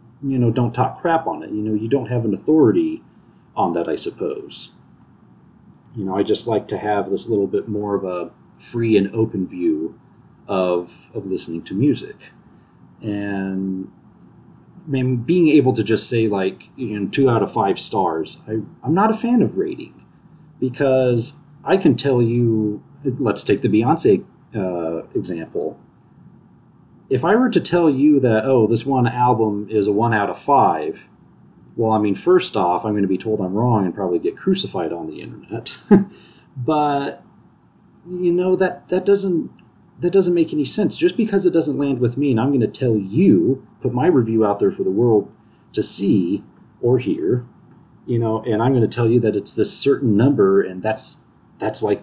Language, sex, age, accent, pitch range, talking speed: English, male, 40-59, American, 110-175 Hz, 185 wpm